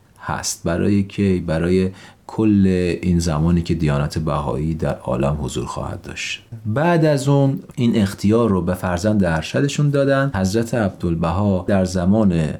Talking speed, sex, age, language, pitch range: 135 wpm, male, 40-59, Persian, 85-105 Hz